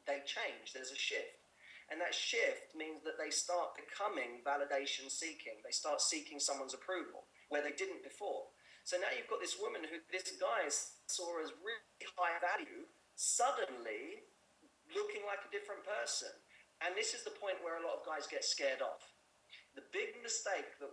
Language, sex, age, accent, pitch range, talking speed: English, male, 30-49, British, 145-200 Hz, 170 wpm